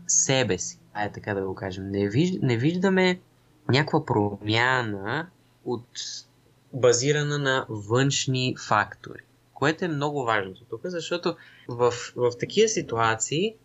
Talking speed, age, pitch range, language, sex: 130 wpm, 20-39, 110-150 Hz, Bulgarian, male